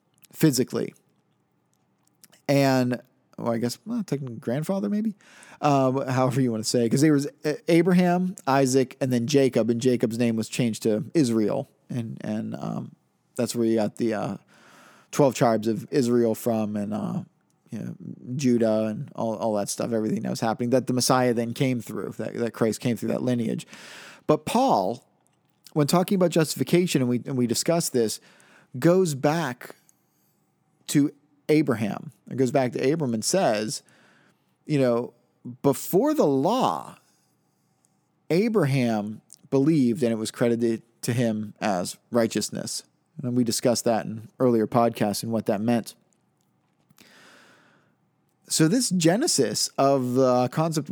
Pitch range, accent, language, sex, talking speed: 115-145 Hz, American, English, male, 150 wpm